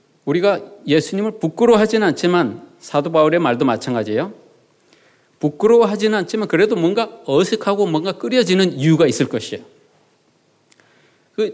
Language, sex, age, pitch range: Korean, male, 40-59, 130-195 Hz